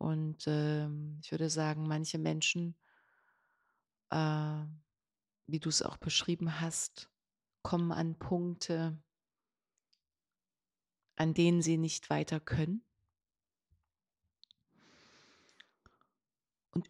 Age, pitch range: 30-49, 155-180 Hz